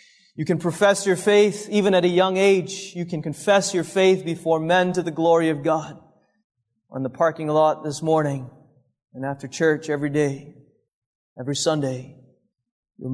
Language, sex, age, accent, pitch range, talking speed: English, male, 30-49, American, 145-165 Hz, 165 wpm